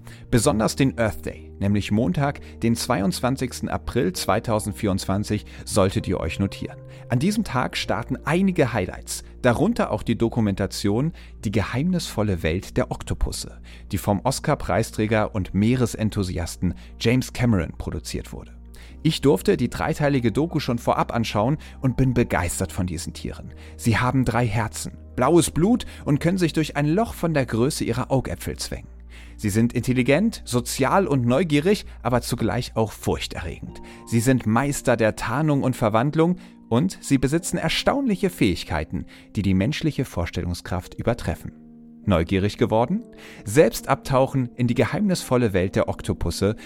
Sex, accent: male, German